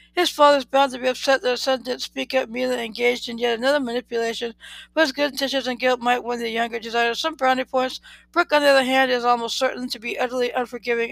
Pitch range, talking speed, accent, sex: 235-265 Hz, 235 wpm, American, female